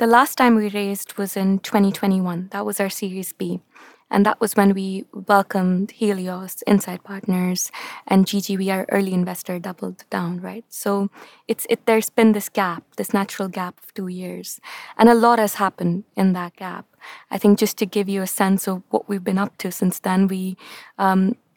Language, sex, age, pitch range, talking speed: English, female, 20-39, 190-215 Hz, 195 wpm